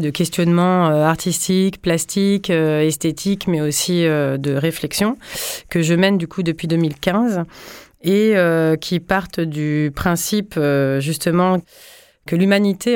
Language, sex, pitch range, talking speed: French, female, 165-195 Hz, 125 wpm